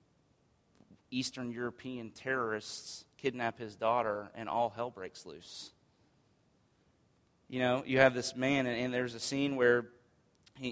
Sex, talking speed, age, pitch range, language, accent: male, 135 wpm, 30-49, 110-130 Hz, English, American